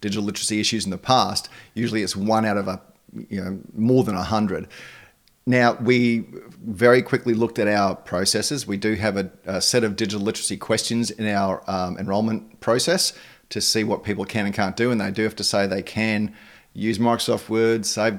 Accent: Australian